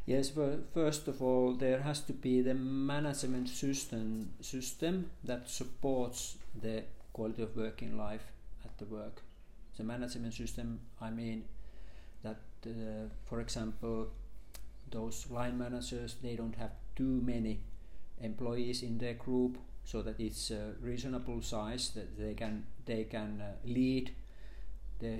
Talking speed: 140 wpm